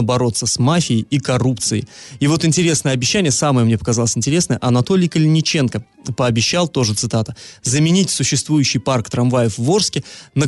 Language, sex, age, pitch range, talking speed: Russian, male, 20-39, 120-160 Hz, 145 wpm